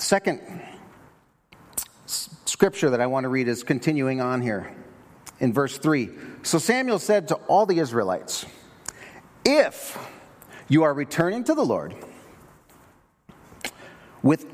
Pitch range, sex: 130-185 Hz, male